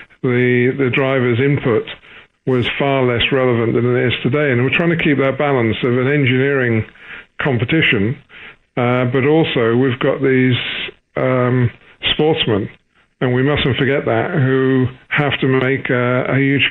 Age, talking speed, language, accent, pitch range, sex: 50-69, 155 wpm, English, British, 120-140 Hz, male